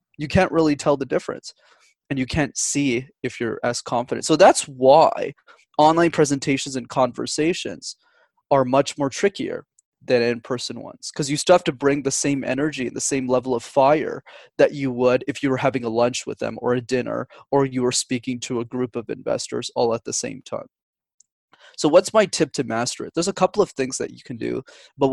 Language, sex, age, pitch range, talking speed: English, male, 20-39, 130-155 Hz, 210 wpm